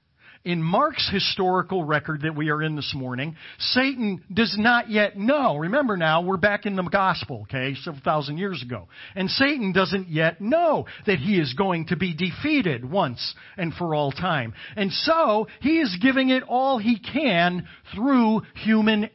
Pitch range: 135-205 Hz